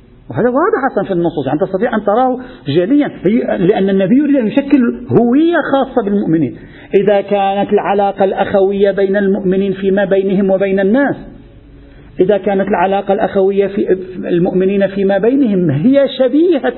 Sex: male